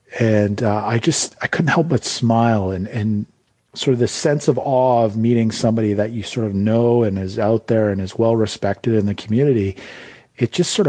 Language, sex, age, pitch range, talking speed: English, male, 40-59, 105-120 Hz, 215 wpm